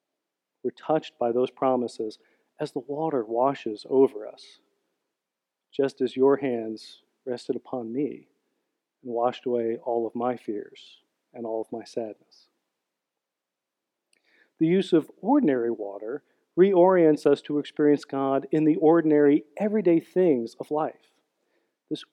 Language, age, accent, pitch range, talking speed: English, 40-59, American, 125-155 Hz, 130 wpm